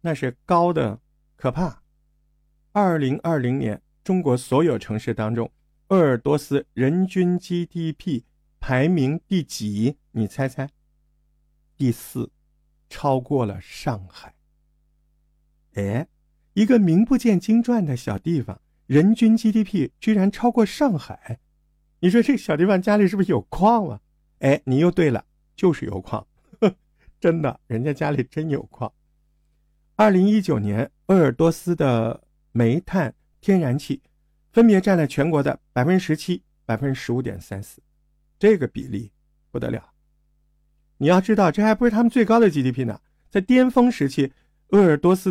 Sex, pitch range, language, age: male, 130-185 Hz, Chinese, 50-69